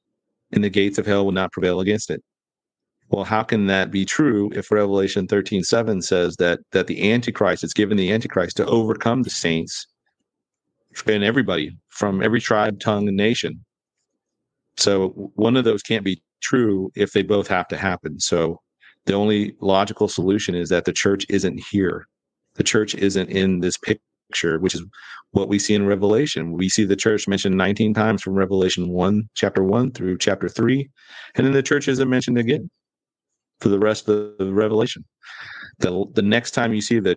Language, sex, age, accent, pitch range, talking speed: English, male, 40-59, American, 95-110 Hz, 180 wpm